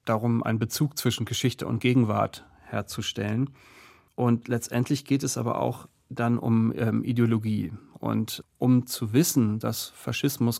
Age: 40-59